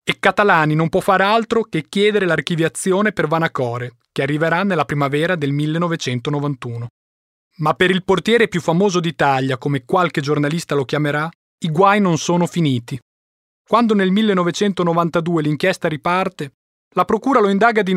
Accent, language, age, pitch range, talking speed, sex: native, Italian, 30-49, 140-205 Hz, 145 wpm, male